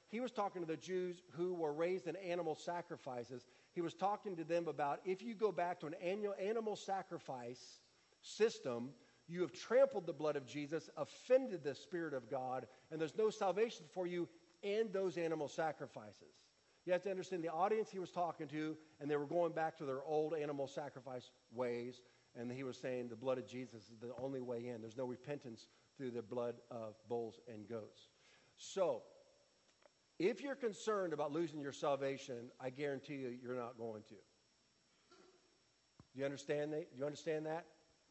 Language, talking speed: English, 175 wpm